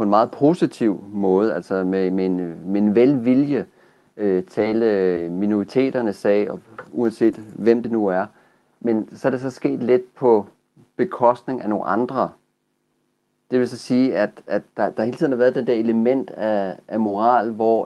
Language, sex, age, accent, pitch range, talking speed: Danish, male, 40-59, native, 100-125 Hz, 175 wpm